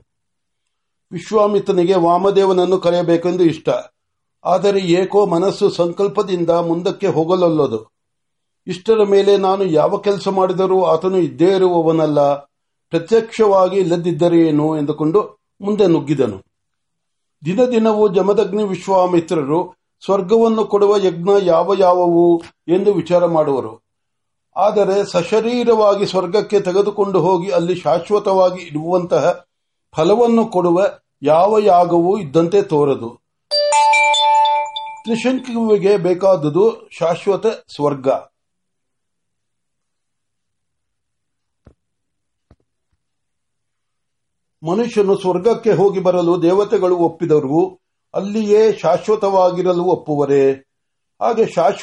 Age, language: 60-79, Marathi